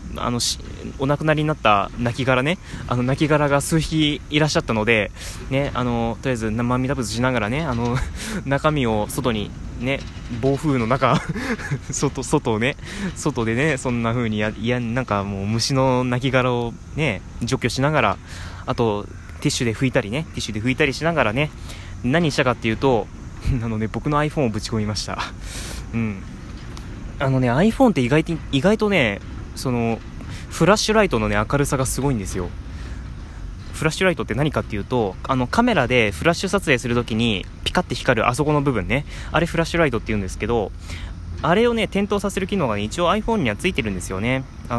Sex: male